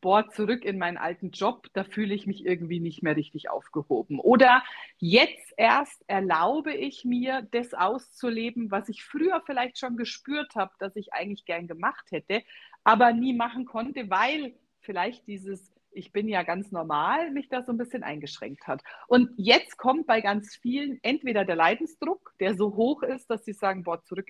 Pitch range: 190-250 Hz